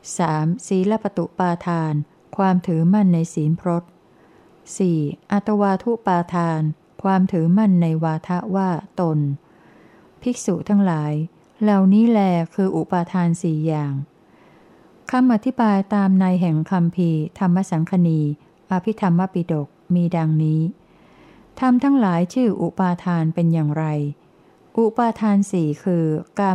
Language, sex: Thai, female